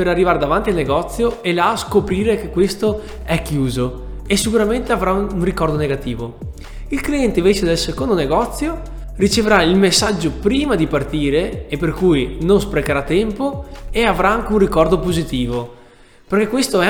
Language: Italian